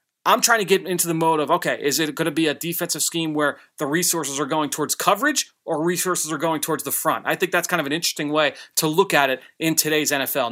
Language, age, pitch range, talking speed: English, 30-49, 155-185 Hz, 260 wpm